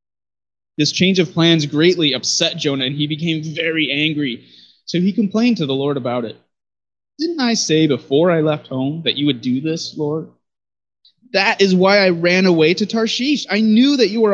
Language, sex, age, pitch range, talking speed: English, male, 20-39, 135-185 Hz, 190 wpm